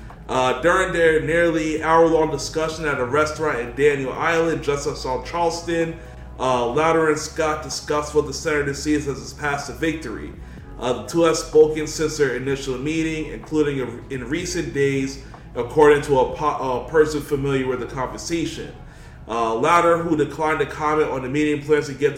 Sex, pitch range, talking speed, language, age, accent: male, 135-155 Hz, 175 wpm, English, 30-49, American